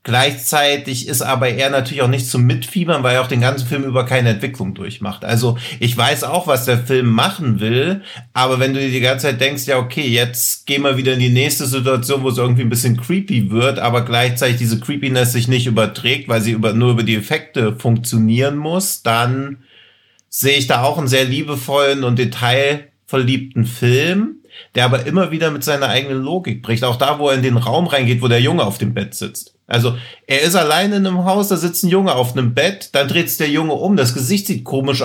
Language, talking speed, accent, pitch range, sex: German, 220 wpm, German, 120-145 Hz, male